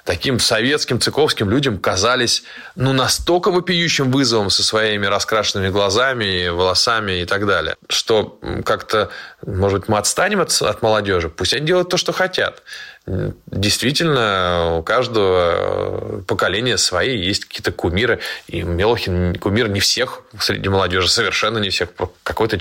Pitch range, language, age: 95-125 Hz, Russian, 20-39